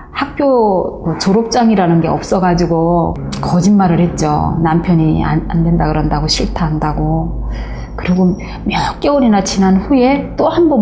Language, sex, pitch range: Korean, female, 160-190 Hz